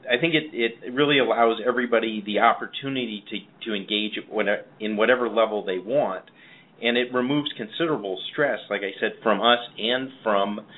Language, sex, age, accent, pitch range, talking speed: English, male, 40-59, American, 105-125 Hz, 160 wpm